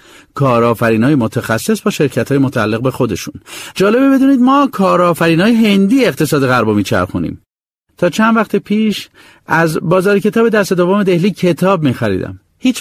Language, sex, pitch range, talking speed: Persian, male, 110-180 Hz, 150 wpm